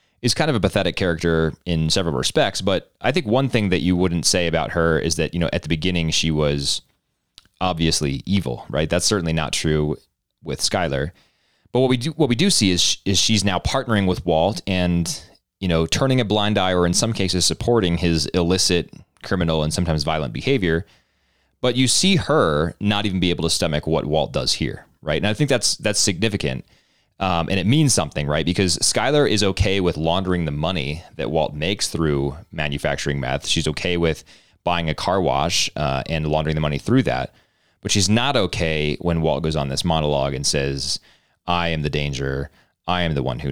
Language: English